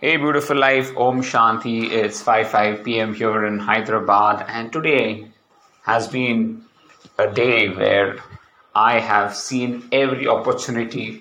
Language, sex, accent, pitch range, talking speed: English, male, Indian, 105-130 Hz, 130 wpm